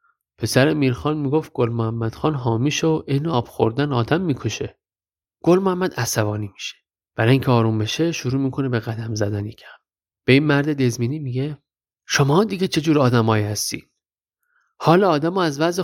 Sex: male